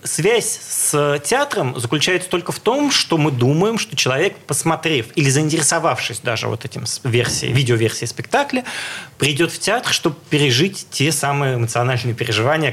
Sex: male